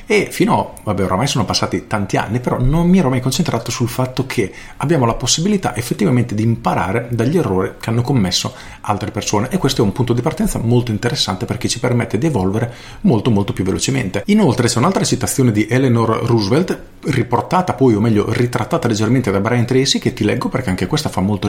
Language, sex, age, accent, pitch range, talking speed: Italian, male, 40-59, native, 110-135 Hz, 205 wpm